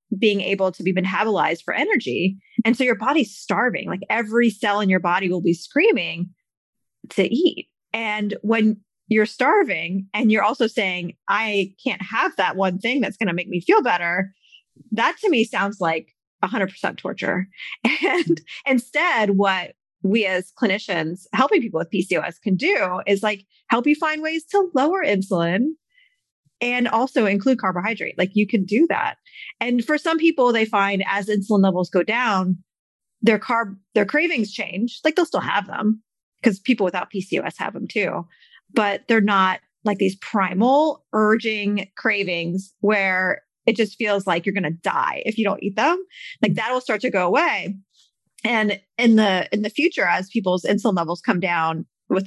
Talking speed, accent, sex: 170 wpm, American, female